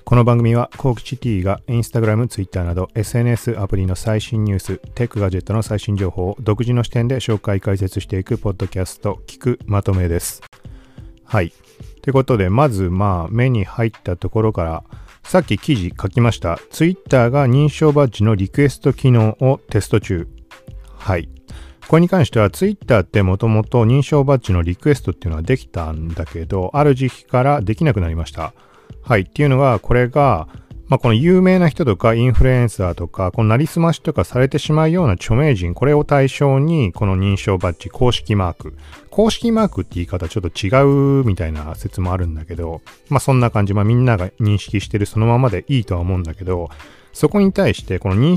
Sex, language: male, Japanese